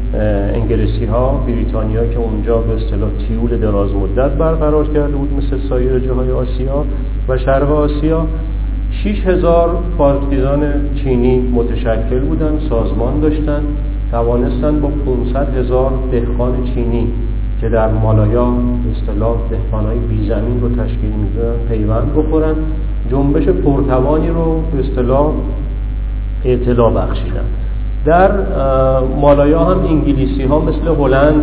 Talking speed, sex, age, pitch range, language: 105 wpm, male, 40-59, 115-145 Hz, Persian